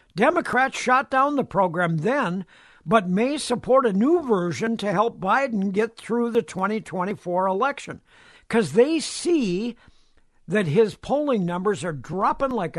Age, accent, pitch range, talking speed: 60-79, American, 180-250 Hz, 140 wpm